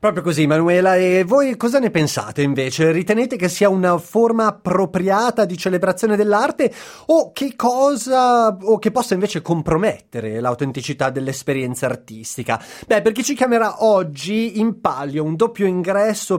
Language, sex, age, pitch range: Italian, male, 30-49, 165-230 Hz